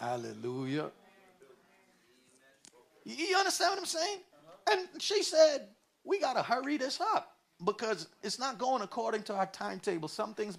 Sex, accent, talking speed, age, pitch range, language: male, American, 140 wpm, 50-69, 145-195 Hz, English